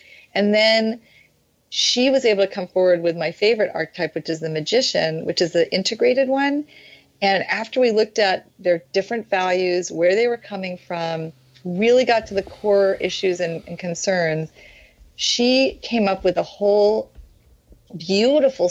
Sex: female